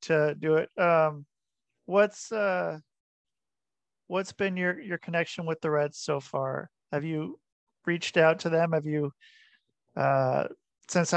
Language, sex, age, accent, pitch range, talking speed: English, male, 40-59, American, 150-175 Hz, 140 wpm